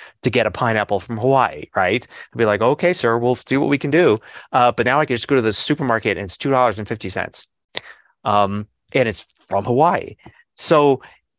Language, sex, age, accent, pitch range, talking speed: English, male, 30-49, American, 105-135 Hz, 215 wpm